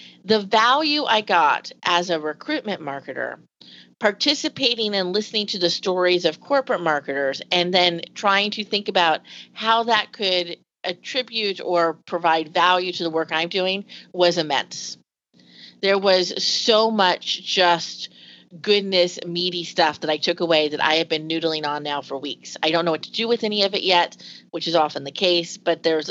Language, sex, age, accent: English, female, 40-59, American